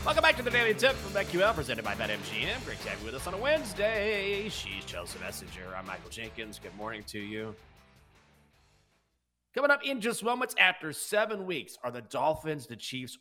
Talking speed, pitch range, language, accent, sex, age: 195 wpm, 110-140 Hz, English, American, male, 30-49